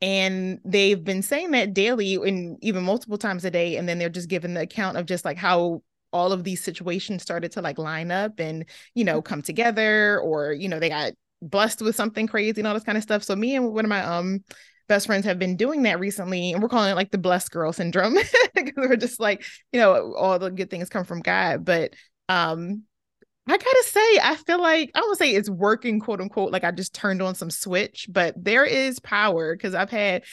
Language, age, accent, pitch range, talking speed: English, 20-39, American, 185-255 Hz, 230 wpm